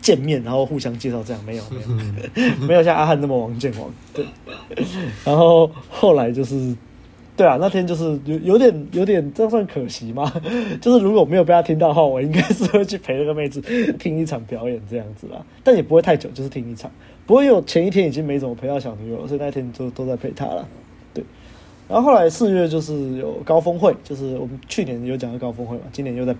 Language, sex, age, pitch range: Chinese, male, 20-39, 120-160 Hz